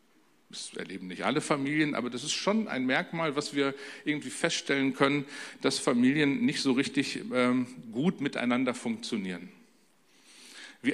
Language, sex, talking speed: German, male, 135 wpm